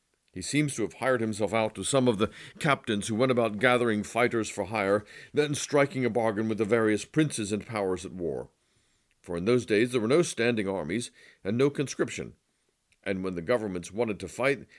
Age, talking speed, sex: 50-69, 205 wpm, male